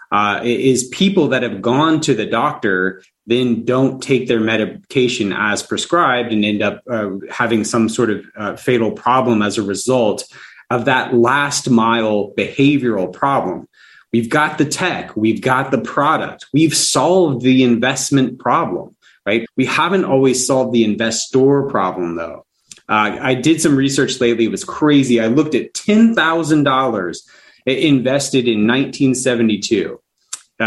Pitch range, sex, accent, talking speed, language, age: 110-135 Hz, male, American, 145 wpm, English, 30-49